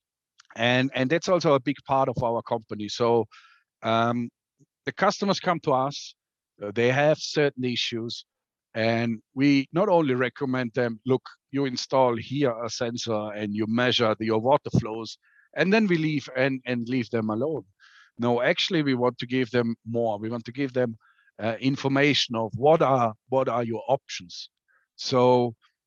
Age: 50-69